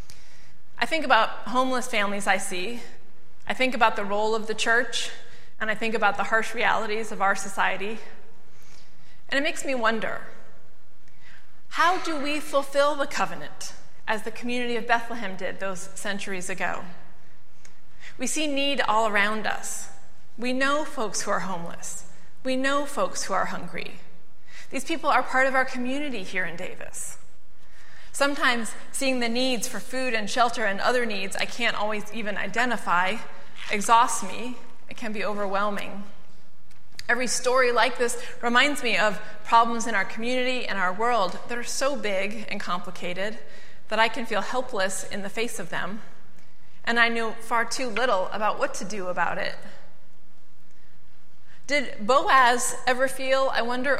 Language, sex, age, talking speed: English, female, 30-49, 160 wpm